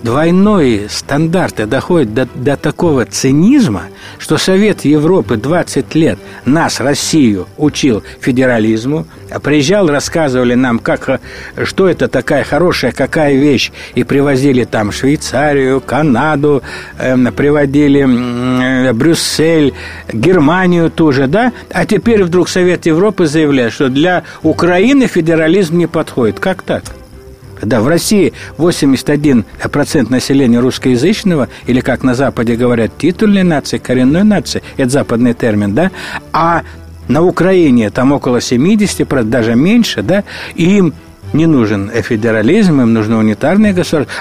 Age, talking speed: 60-79, 120 wpm